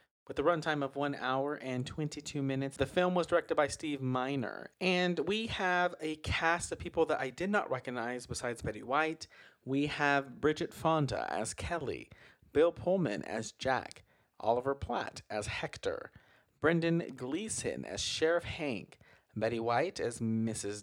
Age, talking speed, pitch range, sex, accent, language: 30-49, 155 wpm, 120-165 Hz, male, American, English